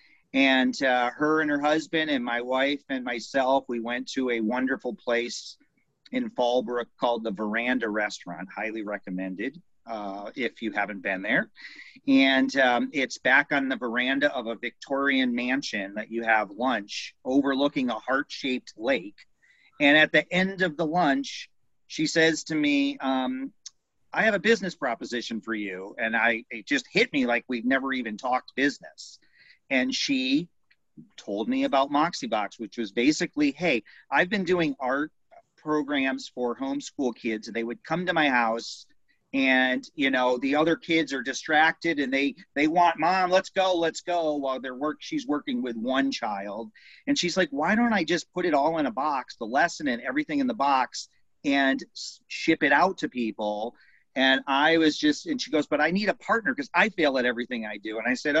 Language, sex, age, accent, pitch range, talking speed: English, male, 40-59, American, 120-160 Hz, 185 wpm